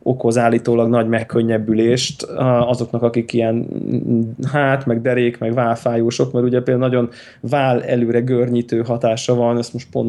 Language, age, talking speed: Hungarian, 20-39, 145 wpm